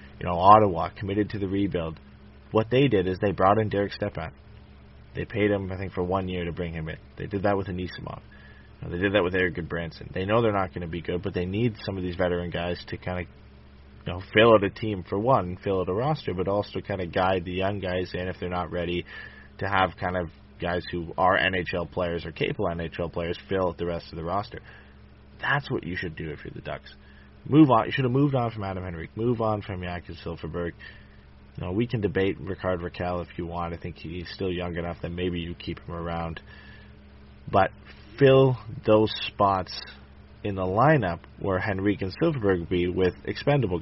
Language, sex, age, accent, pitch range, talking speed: English, male, 20-39, American, 85-100 Hz, 220 wpm